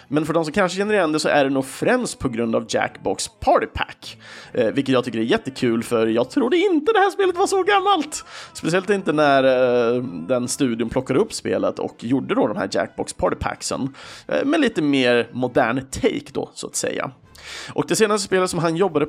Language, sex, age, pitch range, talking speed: Swedish, male, 30-49, 130-200 Hz, 210 wpm